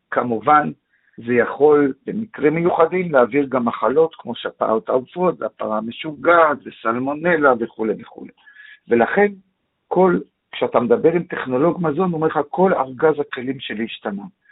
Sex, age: male, 50-69